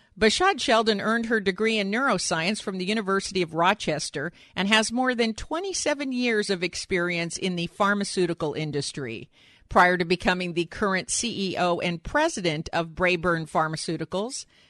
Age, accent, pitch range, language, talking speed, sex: 50-69, American, 175-250 Hz, English, 145 wpm, female